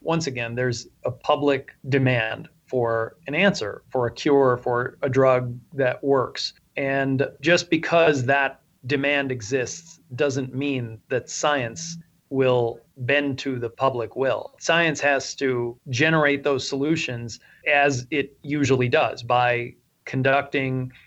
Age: 30-49